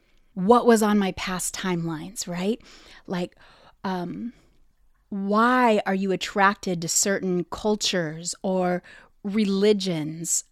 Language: English